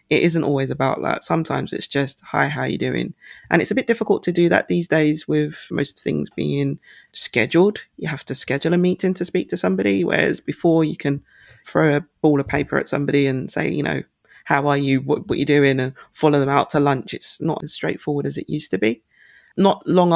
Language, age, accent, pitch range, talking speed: English, 20-39, British, 140-170 Hz, 230 wpm